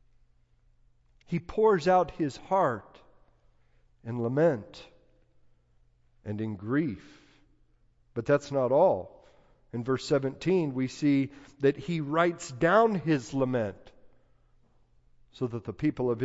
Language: English